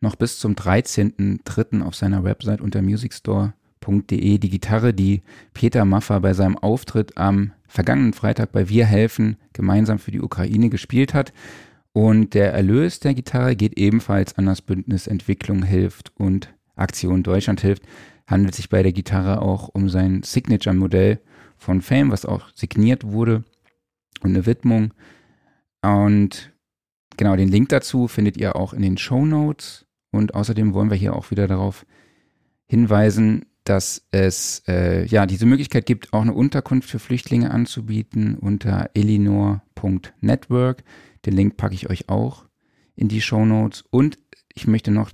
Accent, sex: German, male